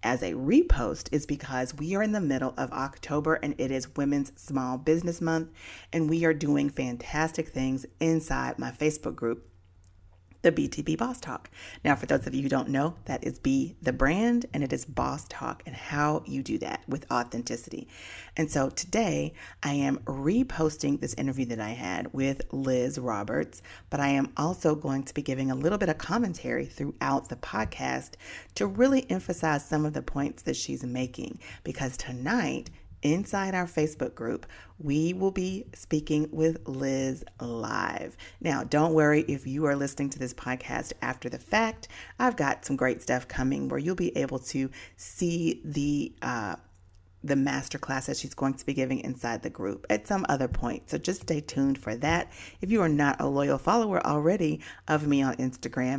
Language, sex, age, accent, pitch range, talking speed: English, female, 40-59, American, 130-160 Hz, 180 wpm